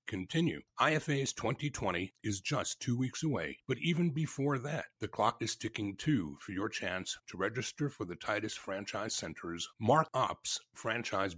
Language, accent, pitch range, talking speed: English, American, 100-150 Hz, 160 wpm